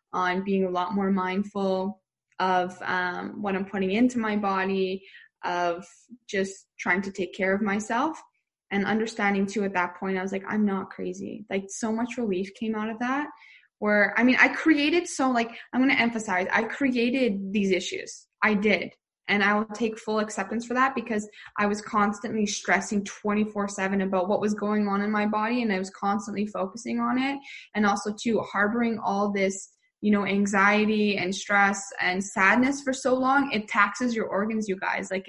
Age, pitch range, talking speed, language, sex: 10-29, 190-220 Hz, 190 wpm, English, female